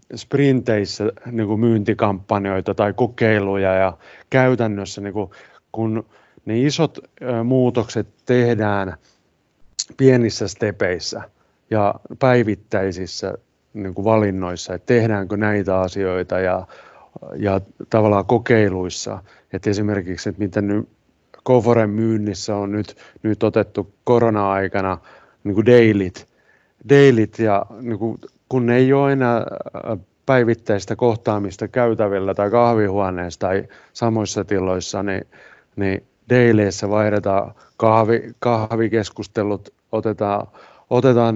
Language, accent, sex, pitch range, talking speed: Finnish, native, male, 100-120 Hz, 95 wpm